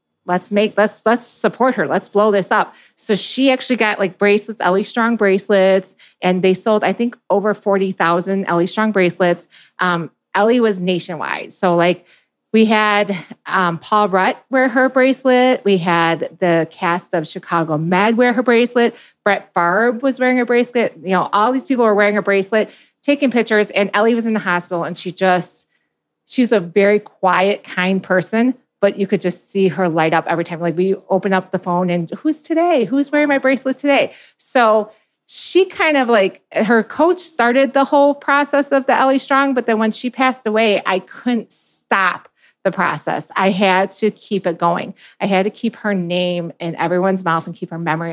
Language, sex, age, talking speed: English, female, 30-49, 190 wpm